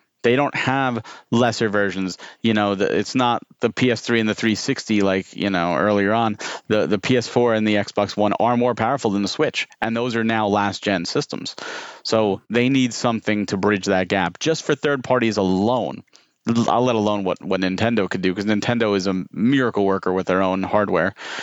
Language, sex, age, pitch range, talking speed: English, male, 30-49, 100-120 Hz, 195 wpm